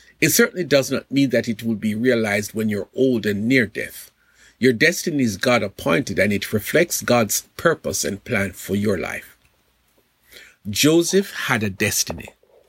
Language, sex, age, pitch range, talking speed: English, male, 50-69, 105-150 Hz, 160 wpm